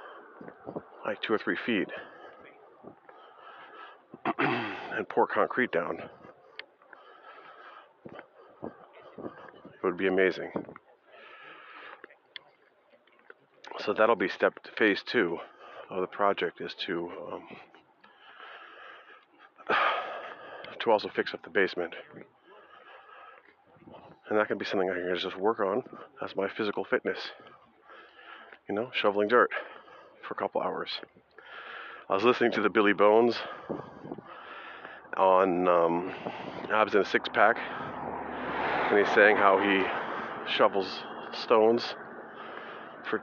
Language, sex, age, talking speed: English, male, 40-59, 105 wpm